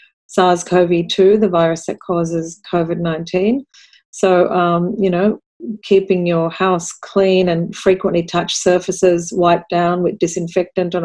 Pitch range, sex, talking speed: 170-200 Hz, female, 125 wpm